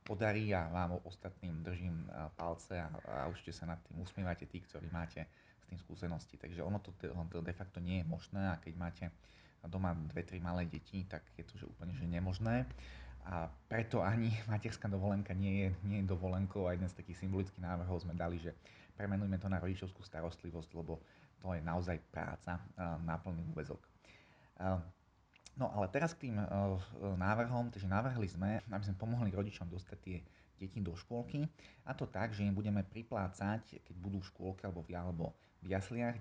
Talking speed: 175 wpm